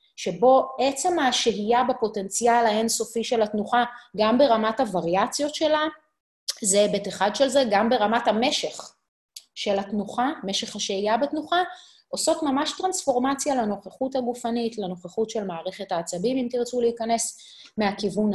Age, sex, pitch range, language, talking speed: 30-49, female, 190-275 Hz, Hebrew, 120 wpm